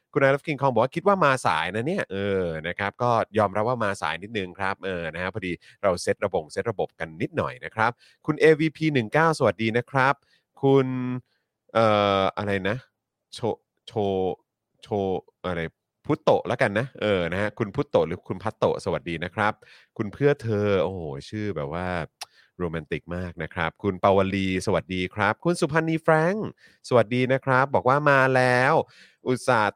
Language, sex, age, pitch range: Thai, male, 30-49, 95-130 Hz